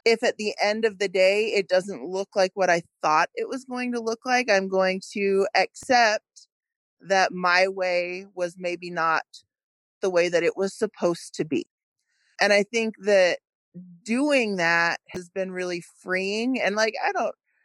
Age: 30-49